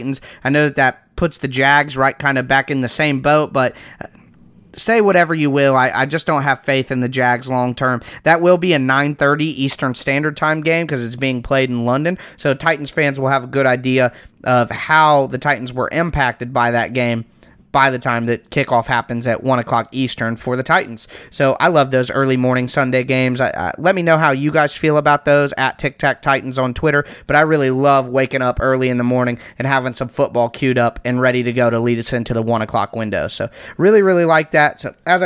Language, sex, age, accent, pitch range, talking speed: English, male, 30-49, American, 125-155 Hz, 230 wpm